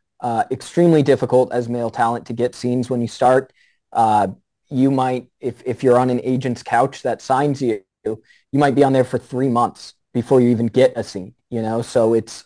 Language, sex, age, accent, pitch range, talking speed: English, male, 20-39, American, 120-140 Hz, 205 wpm